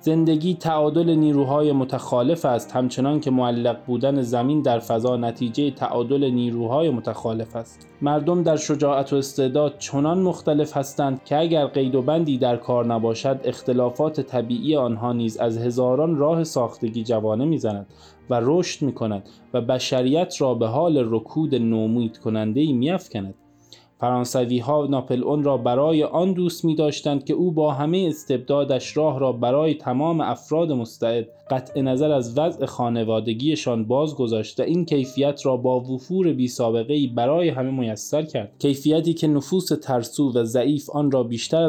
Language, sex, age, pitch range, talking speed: Persian, male, 20-39, 120-150 Hz, 150 wpm